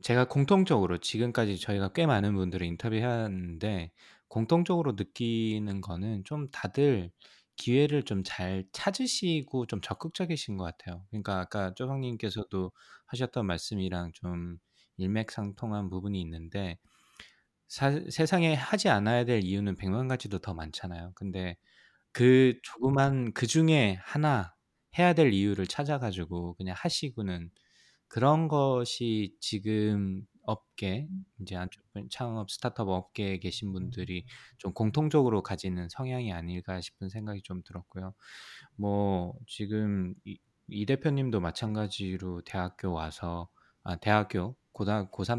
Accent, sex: native, male